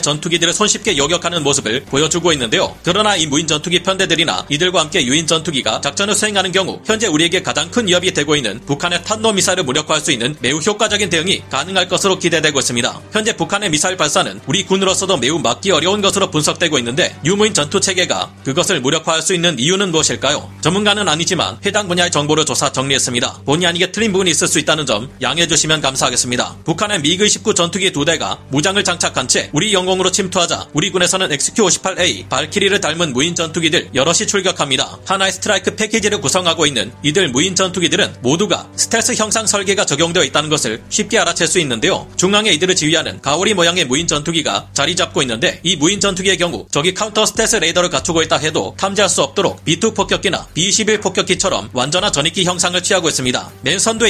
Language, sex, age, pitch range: Korean, male, 40-59, 150-195 Hz